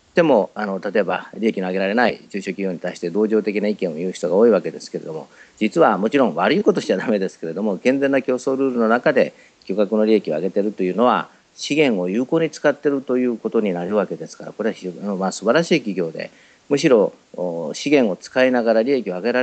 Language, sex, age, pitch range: Japanese, male, 50-69, 95-135 Hz